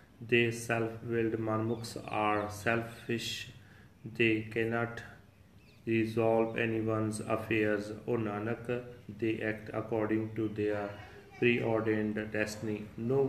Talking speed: 90 wpm